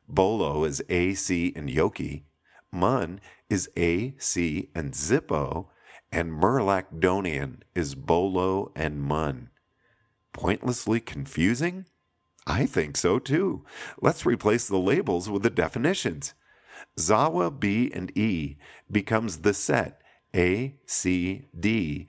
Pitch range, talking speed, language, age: 80-105 Hz, 110 wpm, English, 50-69